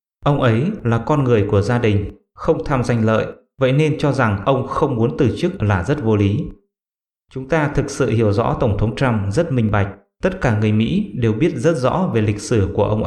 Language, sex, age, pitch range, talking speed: English, male, 20-39, 105-140 Hz, 230 wpm